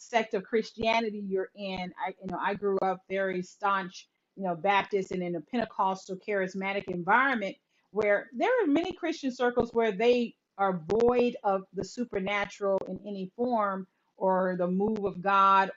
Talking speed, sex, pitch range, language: 165 wpm, female, 190-235 Hz, English